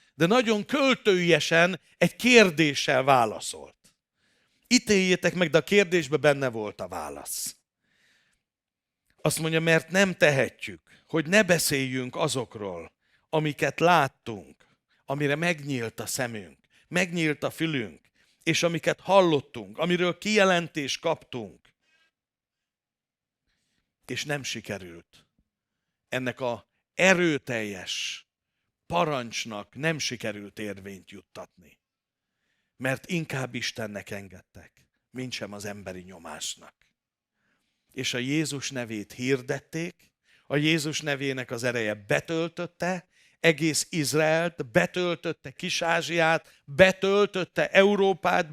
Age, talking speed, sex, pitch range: 60-79, 95 wpm, male, 125-180 Hz